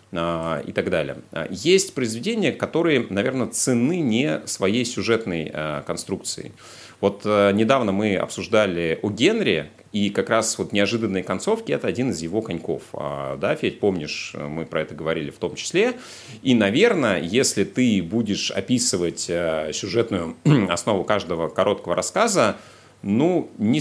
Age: 30-49